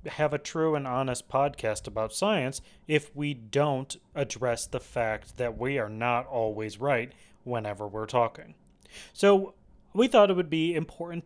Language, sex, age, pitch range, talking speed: English, male, 30-49, 125-190 Hz, 160 wpm